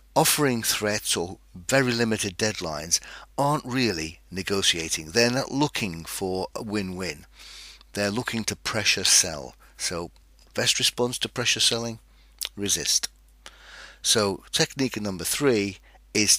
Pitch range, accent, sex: 85-125 Hz, British, male